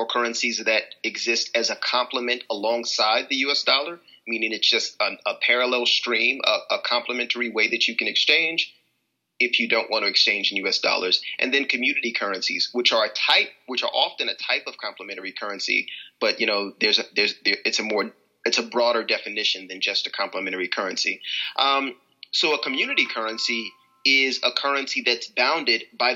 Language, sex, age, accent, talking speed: English, male, 30-49, American, 185 wpm